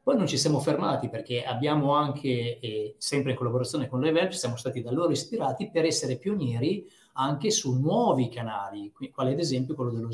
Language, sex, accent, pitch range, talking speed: Italian, male, native, 125-165 Hz, 185 wpm